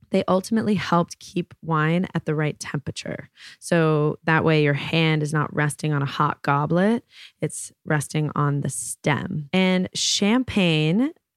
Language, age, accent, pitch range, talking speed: English, 20-39, American, 155-190 Hz, 150 wpm